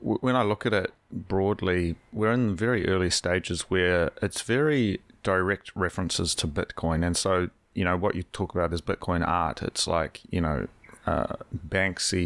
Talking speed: 170 wpm